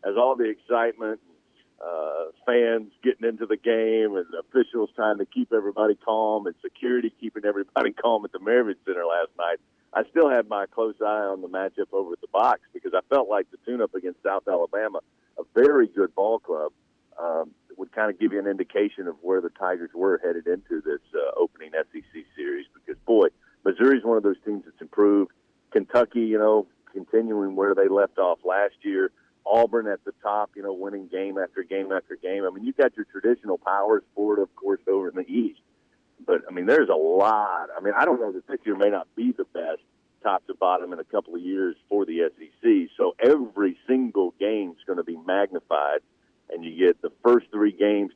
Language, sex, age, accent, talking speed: English, male, 50-69, American, 205 wpm